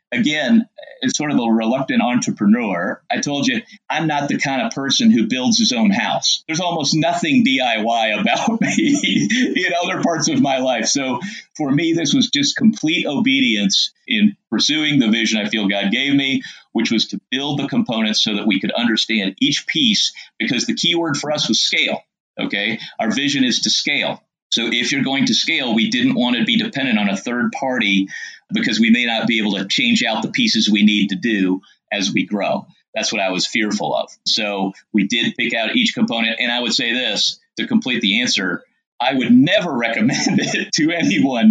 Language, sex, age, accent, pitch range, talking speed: English, male, 40-59, American, 160-260 Hz, 200 wpm